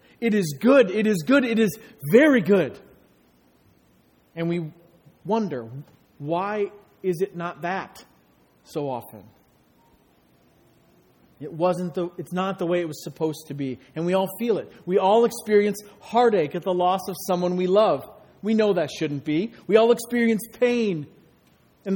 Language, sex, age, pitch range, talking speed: English, male, 40-59, 175-225 Hz, 160 wpm